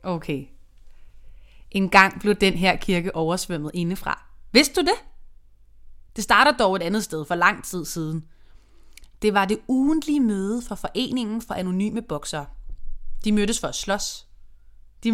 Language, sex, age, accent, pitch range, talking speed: Danish, female, 20-39, native, 155-225 Hz, 150 wpm